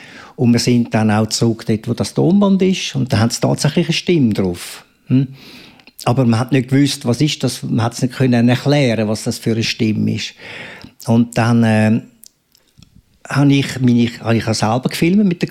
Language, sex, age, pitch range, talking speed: German, male, 50-69, 115-150 Hz, 215 wpm